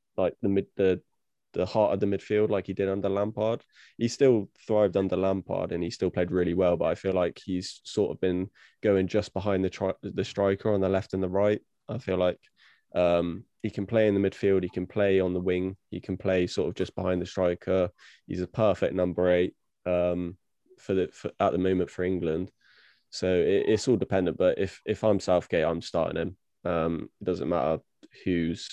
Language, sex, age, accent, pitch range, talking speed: English, male, 20-39, British, 90-100 Hz, 215 wpm